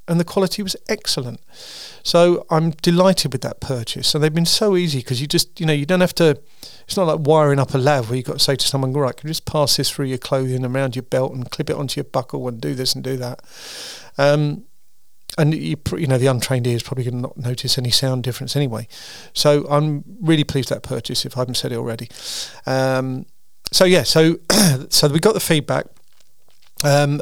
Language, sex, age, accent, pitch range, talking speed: English, male, 40-59, British, 130-160 Hz, 235 wpm